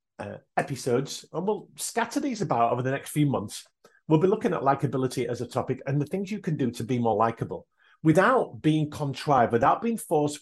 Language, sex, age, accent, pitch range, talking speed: English, male, 40-59, British, 125-160 Hz, 205 wpm